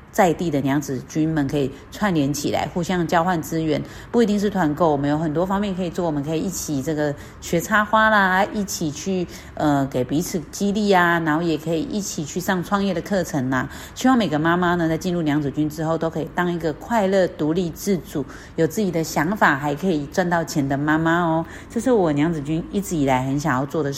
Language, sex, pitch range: Chinese, female, 150-190 Hz